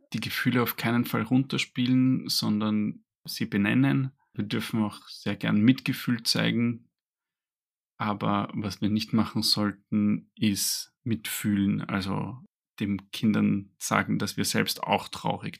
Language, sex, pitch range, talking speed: German, male, 105-120 Hz, 125 wpm